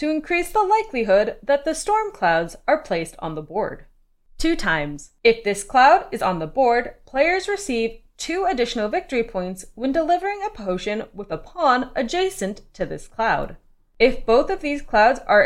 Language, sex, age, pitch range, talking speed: English, female, 20-39, 185-290 Hz, 175 wpm